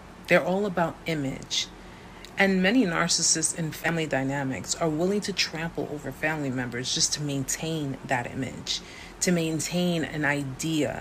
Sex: female